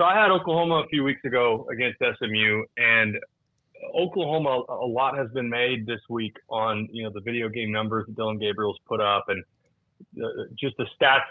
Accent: American